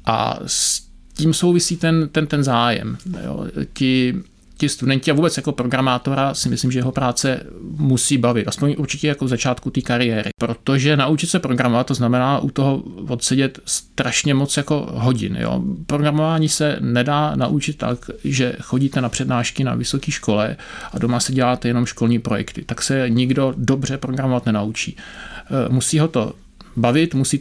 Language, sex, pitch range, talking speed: Czech, male, 120-145 Hz, 160 wpm